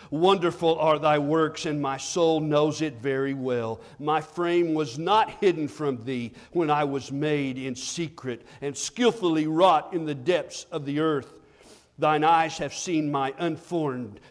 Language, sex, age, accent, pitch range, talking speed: English, male, 50-69, American, 125-170 Hz, 165 wpm